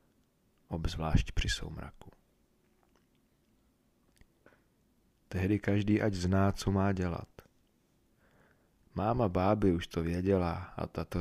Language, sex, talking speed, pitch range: Czech, male, 90 wpm, 80-90 Hz